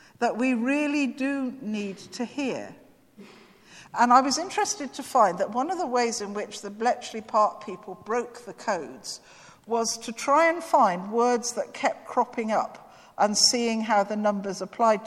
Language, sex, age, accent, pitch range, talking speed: English, female, 50-69, British, 210-265 Hz, 170 wpm